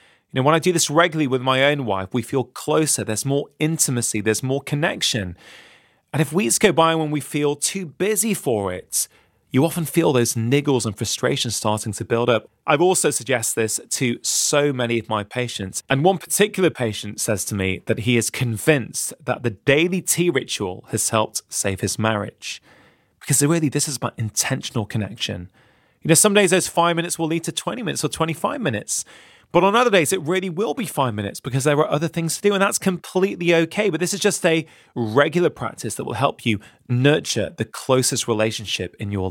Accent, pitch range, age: British, 115-170 Hz, 30-49